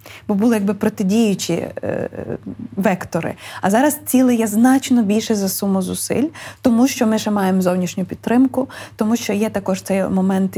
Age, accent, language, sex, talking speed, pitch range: 20-39, native, Ukrainian, female, 160 wpm, 190-230 Hz